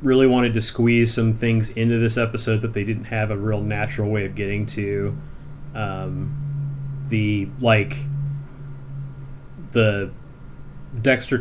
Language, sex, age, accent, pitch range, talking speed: English, male, 30-49, American, 105-125 Hz, 130 wpm